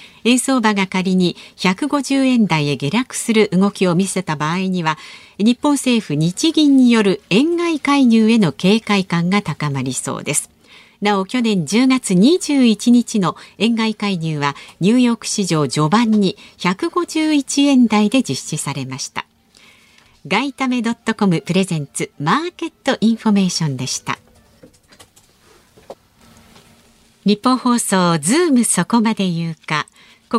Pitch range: 175-250 Hz